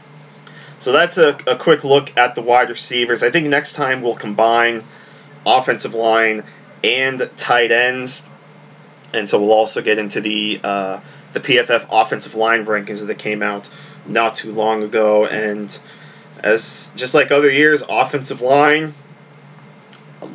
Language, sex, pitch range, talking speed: English, male, 110-140 Hz, 145 wpm